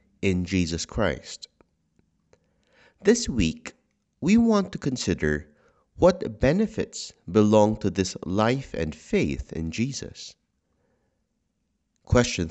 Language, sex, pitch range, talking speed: English, male, 85-120 Hz, 95 wpm